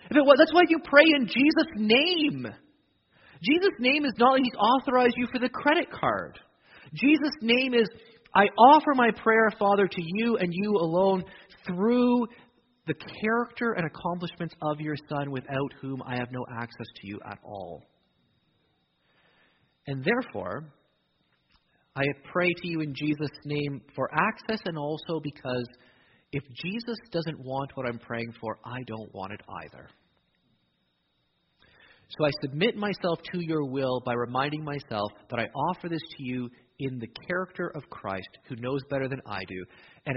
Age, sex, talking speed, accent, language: 30-49, male, 155 wpm, American, English